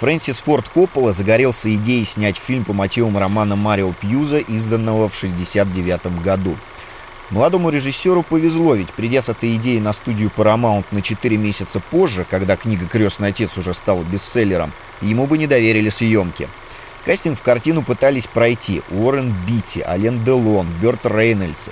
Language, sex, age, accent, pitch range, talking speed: Russian, male, 30-49, native, 105-125 Hz, 150 wpm